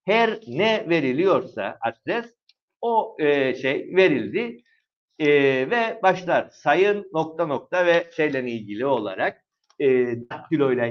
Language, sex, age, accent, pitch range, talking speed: Turkish, male, 60-79, native, 145-190 Hz, 110 wpm